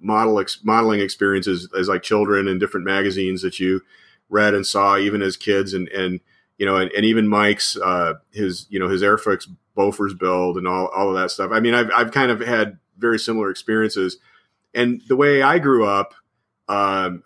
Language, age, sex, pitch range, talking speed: English, 40-59, male, 95-110 Hz, 190 wpm